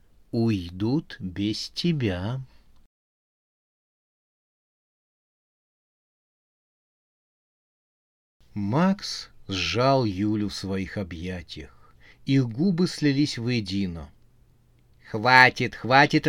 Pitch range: 105-140 Hz